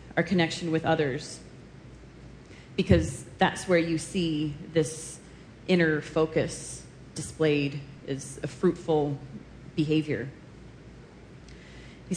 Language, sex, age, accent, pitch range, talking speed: English, female, 30-49, American, 150-175 Hz, 90 wpm